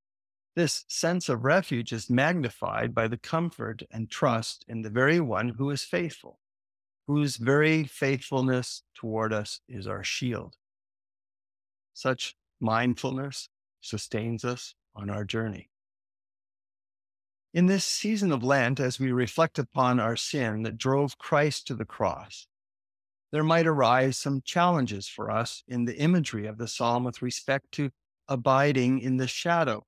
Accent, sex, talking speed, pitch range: American, male, 140 wpm, 115-165 Hz